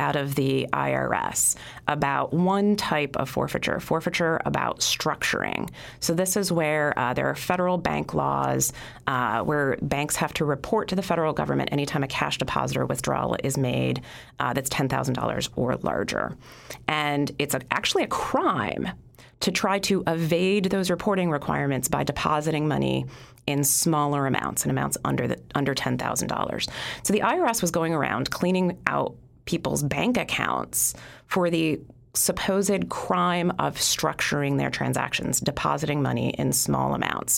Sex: female